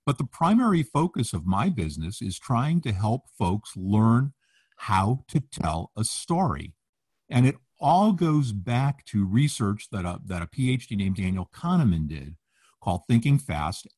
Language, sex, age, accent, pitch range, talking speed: English, male, 50-69, American, 95-130 Hz, 155 wpm